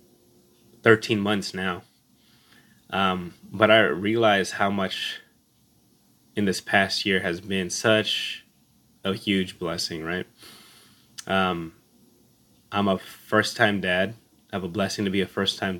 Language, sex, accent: English, male, American